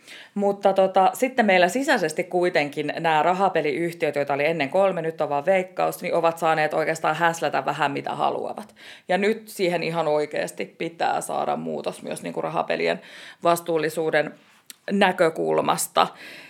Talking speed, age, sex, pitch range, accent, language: 125 wpm, 20-39, female, 165-210 Hz, native, Finnish